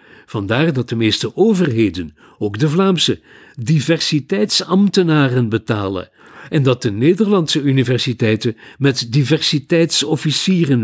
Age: 50-69